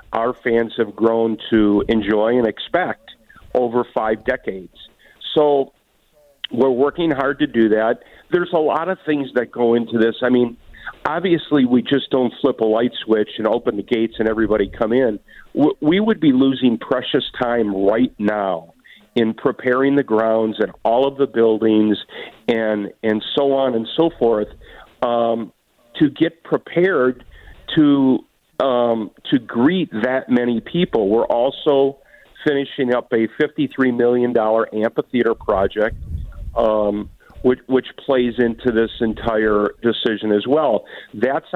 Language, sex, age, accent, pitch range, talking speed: English, male, 50-69, American, 115-145 Hz, 145 wpm